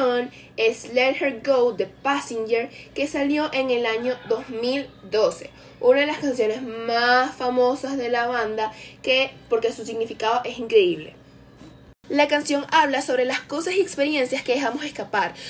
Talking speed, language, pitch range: 145 wpm, English, 225-280 Hz